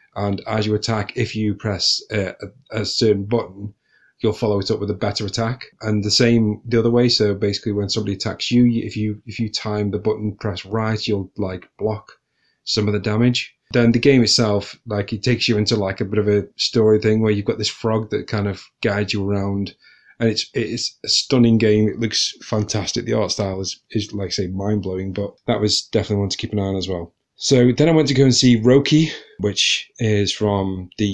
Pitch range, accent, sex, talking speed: 100-115 Hz, British, male, 225 wpm